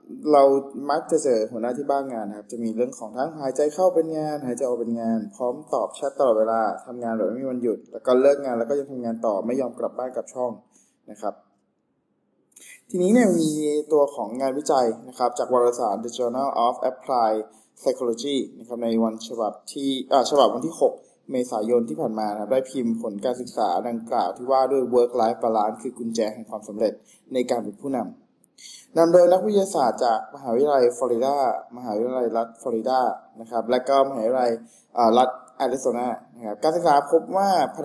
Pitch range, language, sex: 115-150 Hz, Thai, male